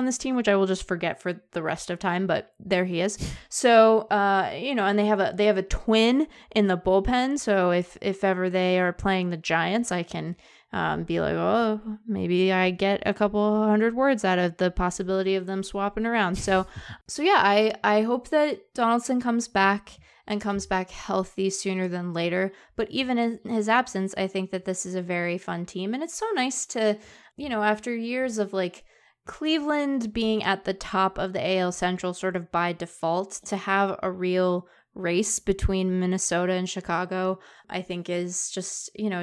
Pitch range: 180-215 Hz